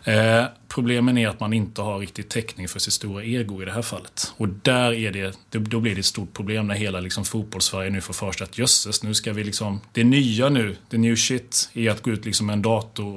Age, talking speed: 30-49, 220 wpm